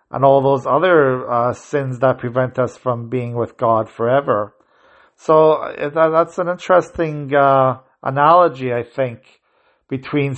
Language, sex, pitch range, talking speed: English, male, 125-145 Hz, 135 wpm